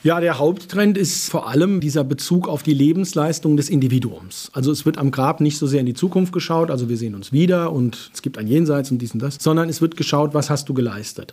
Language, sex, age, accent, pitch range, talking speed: German, male, 40-59, German, 135-165 Hz, 250 wpm